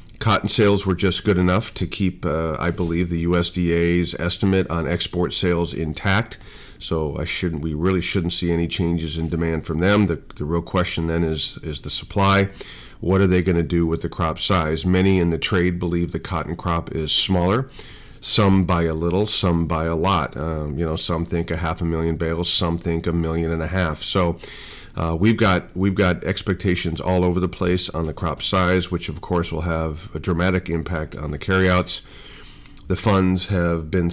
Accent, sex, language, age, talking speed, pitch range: American, male, English, 40-59, 200 wpm, 80-95 Hz